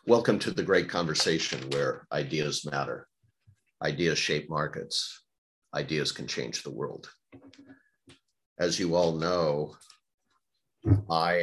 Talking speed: 110 wpm